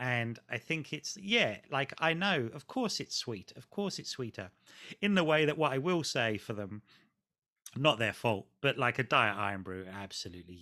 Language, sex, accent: English, male, British